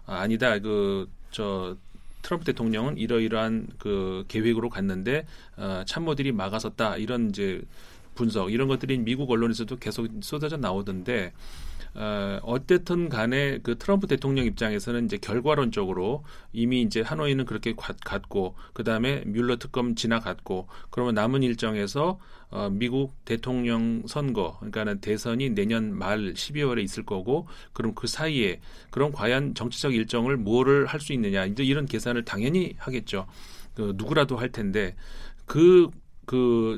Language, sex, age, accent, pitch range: Korean, male, 40-59, native, 105-140 Hz